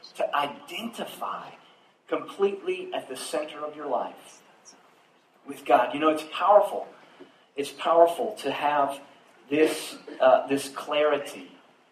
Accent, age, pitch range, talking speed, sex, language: American, 40-59, 130-165 Hz, 115 wpm, male, English